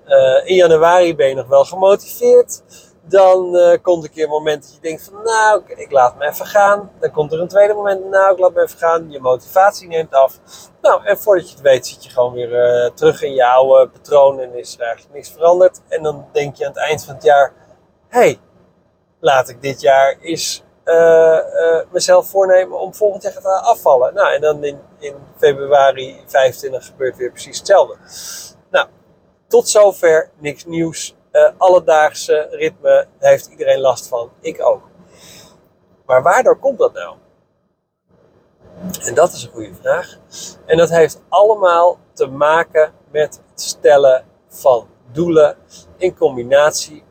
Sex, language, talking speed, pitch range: male, Dutch, 180 wpm, 145-205 Hz